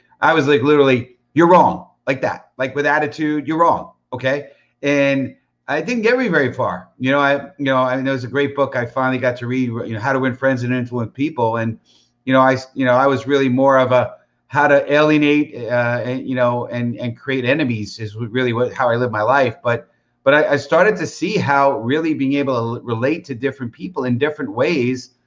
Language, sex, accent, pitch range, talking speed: English, male, American, 120-135 Hz, 235 wpm